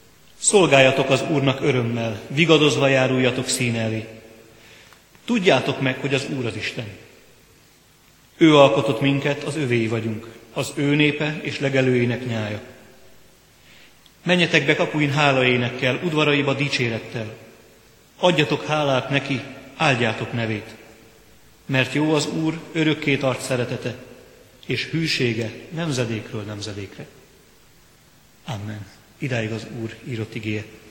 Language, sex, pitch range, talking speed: Hungarian, male, 115-140 Hz, 105 wpm